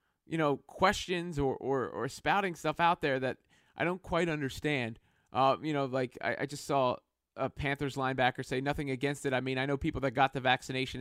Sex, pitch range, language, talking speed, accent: male, 125-155 Hz, English, 215 wpm, American